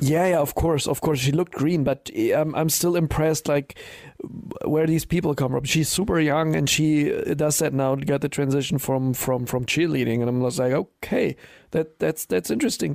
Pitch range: 130-155 Hz